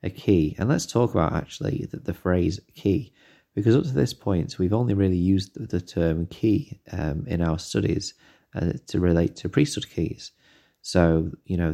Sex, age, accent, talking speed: male, 30-49, British, 185 wpm